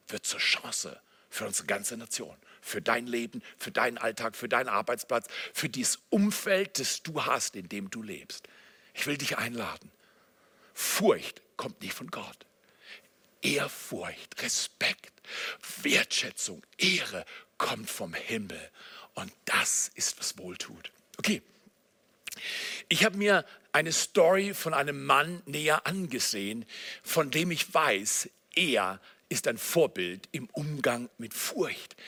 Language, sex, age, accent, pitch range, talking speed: German, male, 60-79, German, 165-225 Hz, 130 wpm